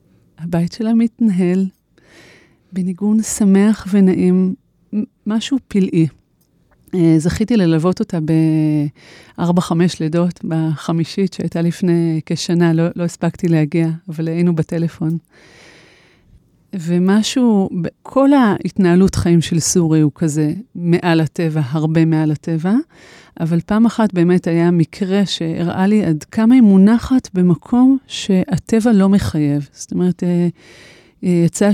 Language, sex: Hebrew, female